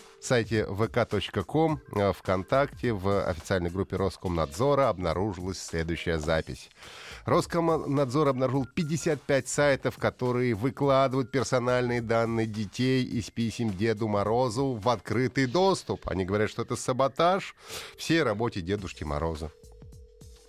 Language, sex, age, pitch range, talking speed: Russian, male, 30-49, 100-155 Hz, 100 wpm